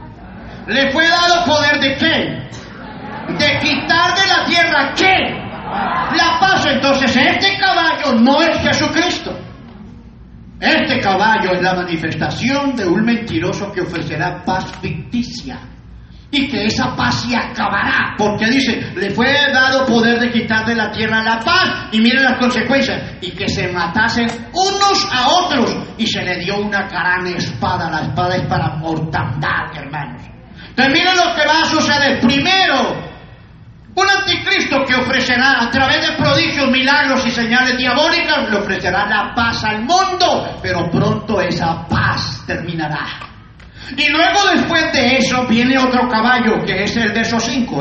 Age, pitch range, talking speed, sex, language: 40-59, 180-280 Hz, 150 wpm, male, English